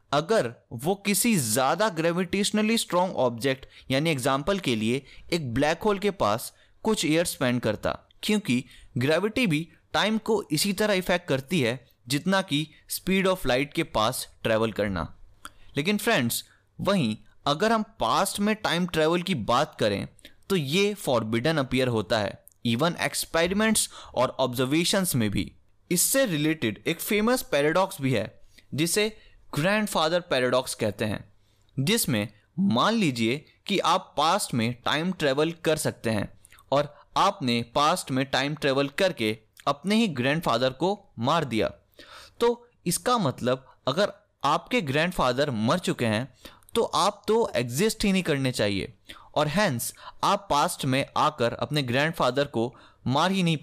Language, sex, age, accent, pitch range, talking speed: Hindi, male, 20-39, native, 120-190 Hz, 145 wpm